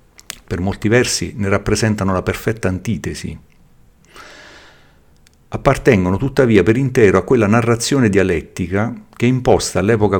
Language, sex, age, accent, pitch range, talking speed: Italian, male, 50-69, native, 90-120 Hz, 120 wpm